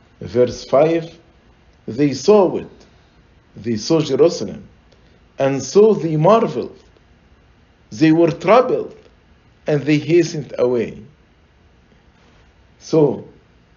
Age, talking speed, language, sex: 50-69, 85 wpm, English, male